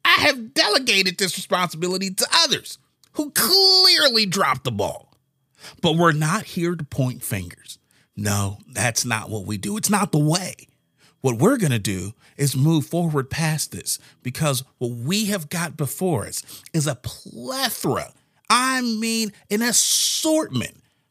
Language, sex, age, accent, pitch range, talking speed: English, male, 40-59, American, 130-215 Hz, 150 wpm